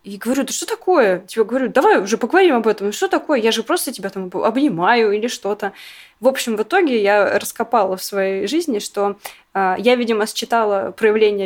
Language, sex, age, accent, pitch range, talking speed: Russian, female, 20-39, native, 210-305 Hz, 190 wpm